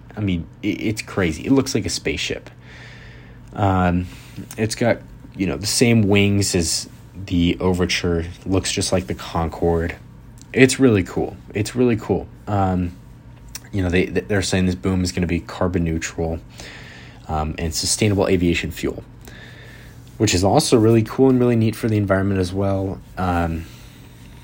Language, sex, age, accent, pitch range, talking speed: English, male, 20-39, American, 85-110 Hz, 155 wpm